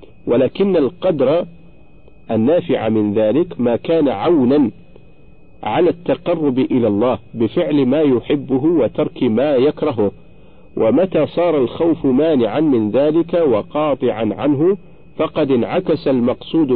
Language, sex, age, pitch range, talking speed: Arabic, male, 50-69, 115-165 Hz, 105 wpm